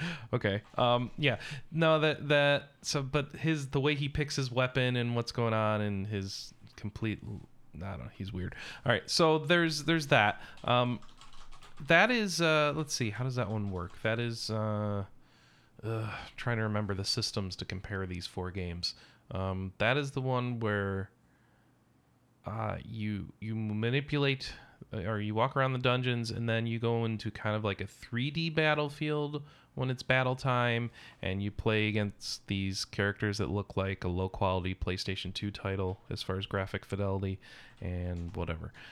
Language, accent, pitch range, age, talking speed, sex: English, American, 100-130 Hz, 30-49, 170 wpm, male